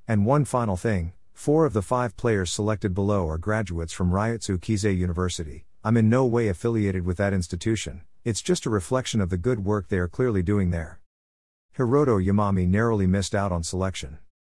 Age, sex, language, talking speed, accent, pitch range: 50-69, male, English, 185 wpm, American, 90-115 Hz